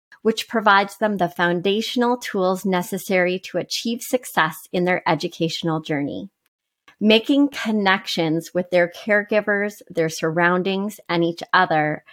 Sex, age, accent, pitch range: female, 30-49, American, 175-220 Hz